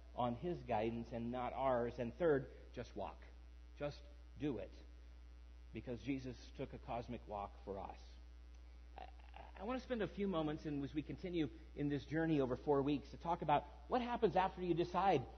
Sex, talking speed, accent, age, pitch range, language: male, 185 wpm, American, 50-69, 120-170 Hz, English